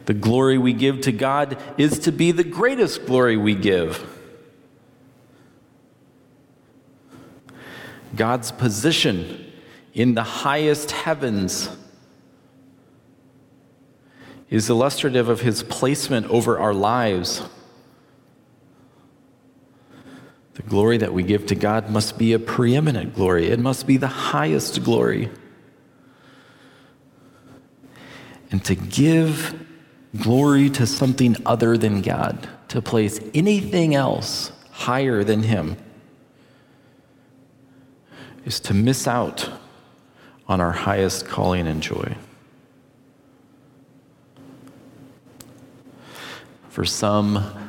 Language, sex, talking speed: English, male, 95 wpm